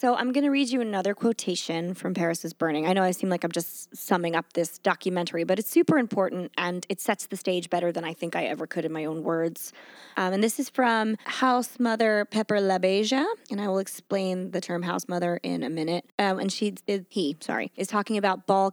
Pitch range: 180-225 Hz